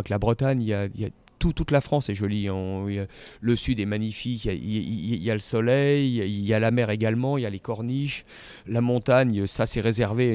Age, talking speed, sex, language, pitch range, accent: 40-59, 260 wpm, male, French, 105-125 Hz, French